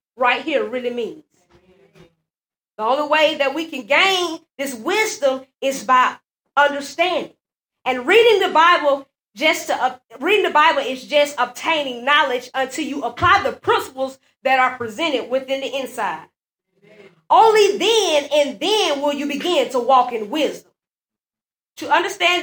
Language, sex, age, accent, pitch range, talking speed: English, female, 20-39, American, 260-325 Hz, 145 wpm